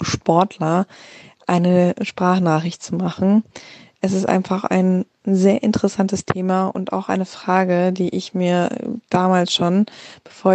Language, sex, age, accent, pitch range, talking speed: German, female, 20-39, German, 180-200 Hz, 125 wpm